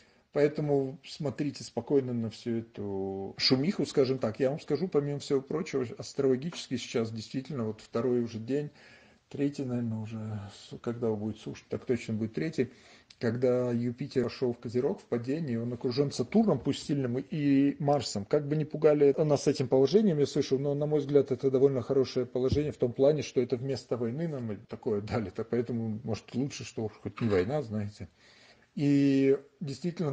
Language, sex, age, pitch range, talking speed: Russian, male, 40-59, 110-140 Hz, 170 wpm